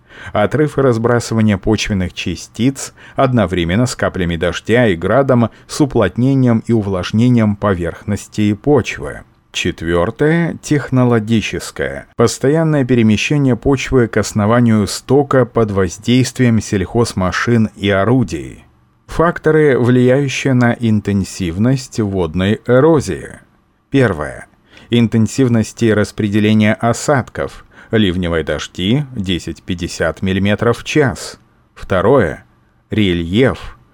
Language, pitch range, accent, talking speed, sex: Russian, 100-125 Hz, native, 85 wpm, male